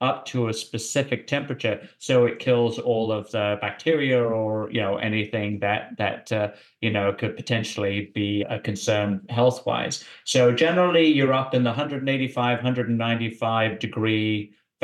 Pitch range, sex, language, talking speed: 105-125 Hz, male, English, 140 wpm